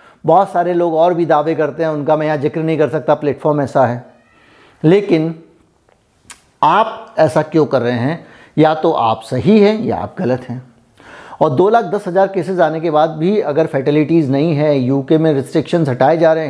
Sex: male